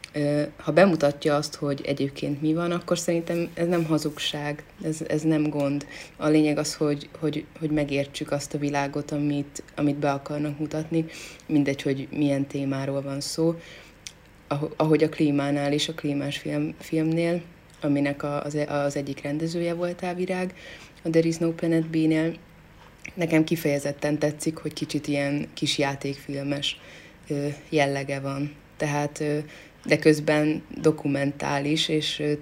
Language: Hungarian